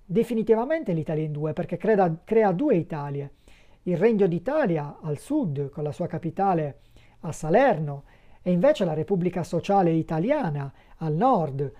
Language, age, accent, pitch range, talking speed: Italian, 40-59, native, 155-205 Hz, 140 wpm